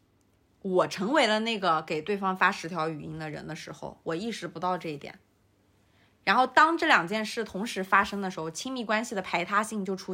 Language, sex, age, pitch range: Chinese, female, 20-39, 165-220 Hz